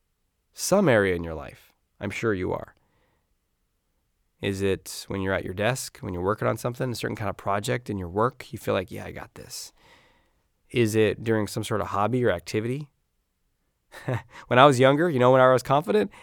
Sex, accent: male, American